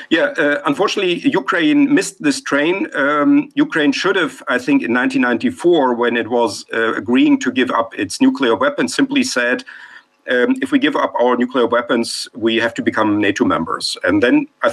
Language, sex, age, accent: Romanian, male, 50-69, German